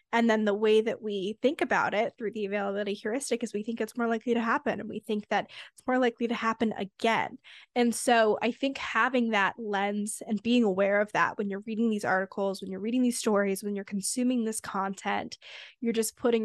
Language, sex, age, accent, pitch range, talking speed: English, female, 10-29, American, 205-235 Hz, 225 wpm